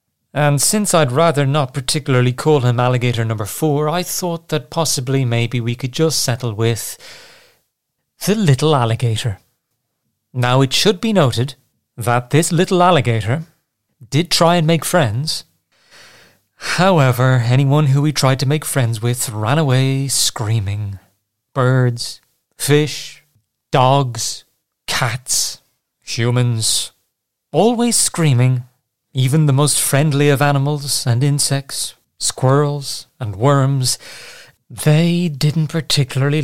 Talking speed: 115 wpm